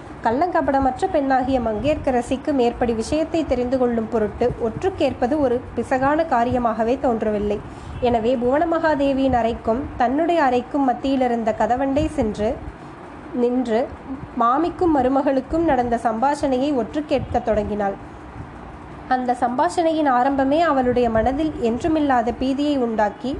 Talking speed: 90 wpm